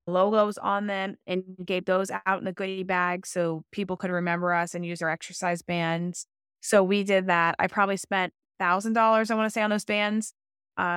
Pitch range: 175-225 Hz